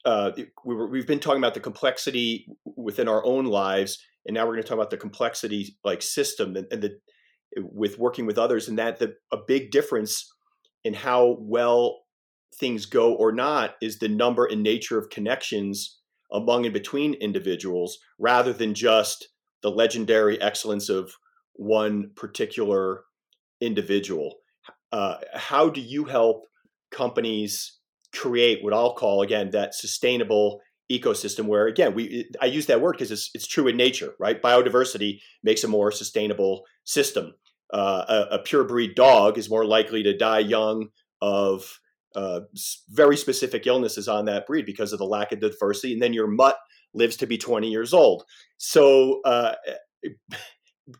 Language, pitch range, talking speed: English, 105-130 Hz, 160 wpm